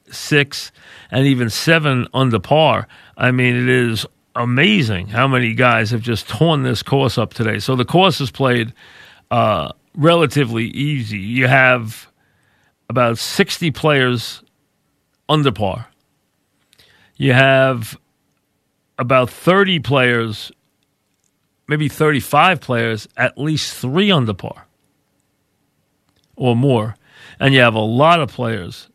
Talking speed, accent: 120 wpm, American